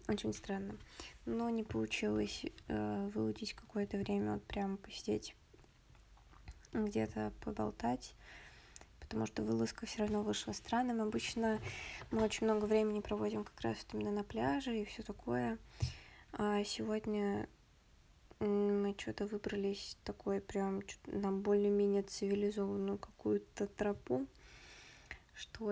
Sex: female